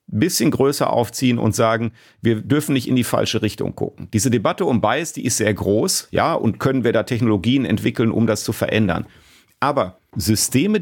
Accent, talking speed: German, 190 wpm